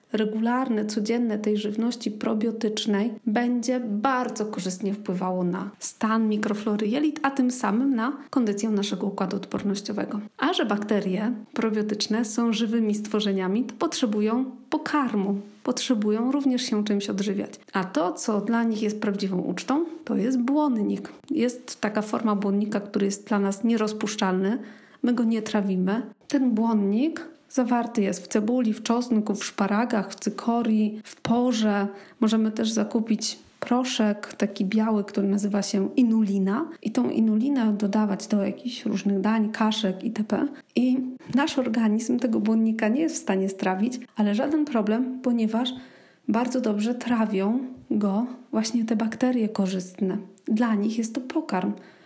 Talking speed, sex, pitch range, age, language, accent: 140 wpm, female, 210-245 Hz, 40-59, Polish, native